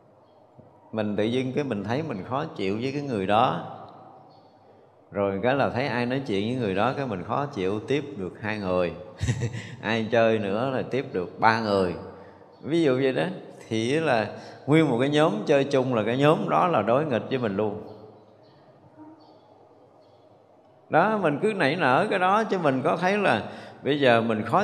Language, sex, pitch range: Vietnamese, male, 105-150 Hz